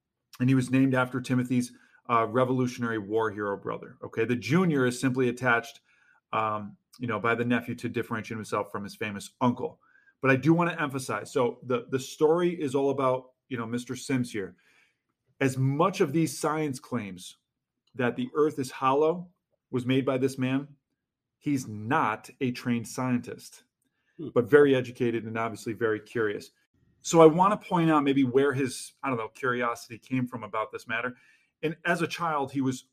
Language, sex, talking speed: English, male, 180 wpm